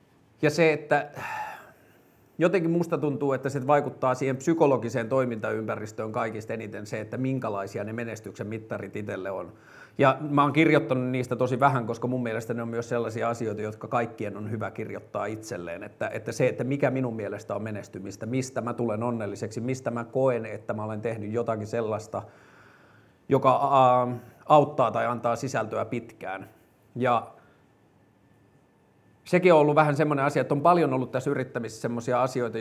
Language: Finnish